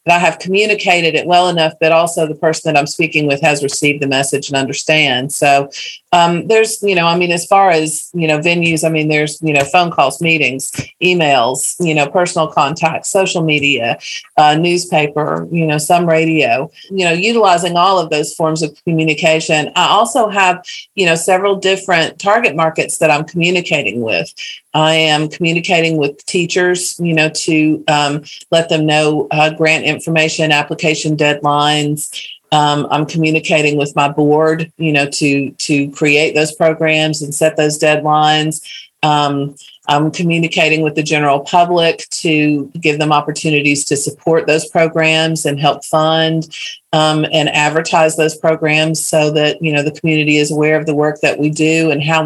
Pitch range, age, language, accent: 150-170 Hz, 40-59, English, American